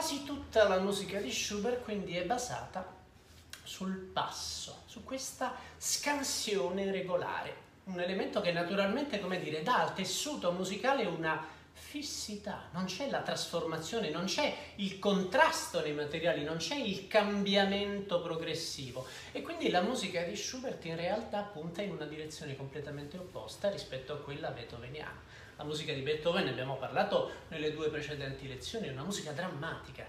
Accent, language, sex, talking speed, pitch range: native, Italian, male, 150 wpm, 155-215 Hz